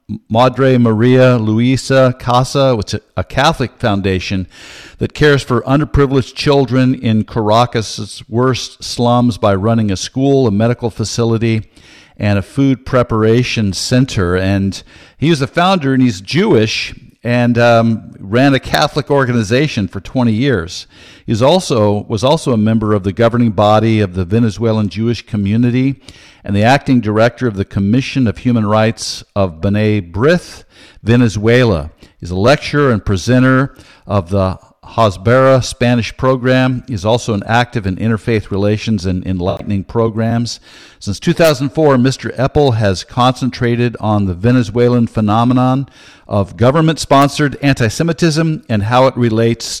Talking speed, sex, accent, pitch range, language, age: 135 wpm, male, American, 105-130 Hz, English, 50-69